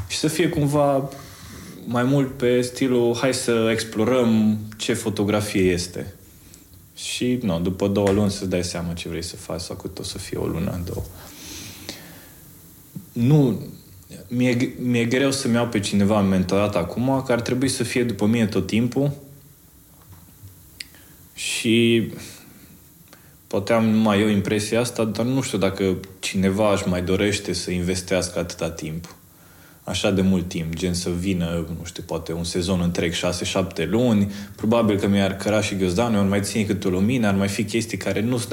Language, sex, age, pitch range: Romanian, male, 20-39, 90-110 Hz